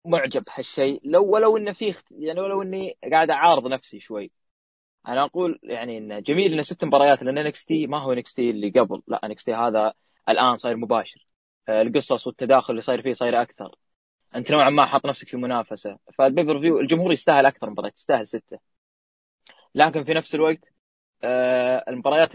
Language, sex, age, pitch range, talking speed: Arabic, male, 20-39, 120-165 Hz, 175 wpm